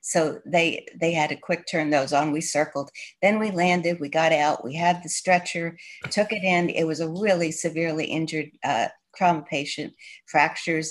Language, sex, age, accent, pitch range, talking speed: English, female, 60-79, American, 160-185 Hz, 185 wpm